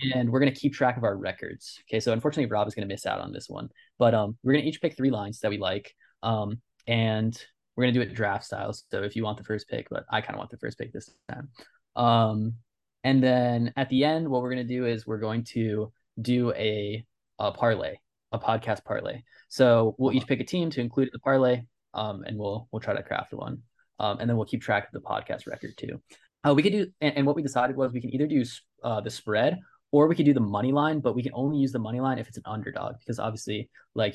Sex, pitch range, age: male, 110-135 Hz, 20-39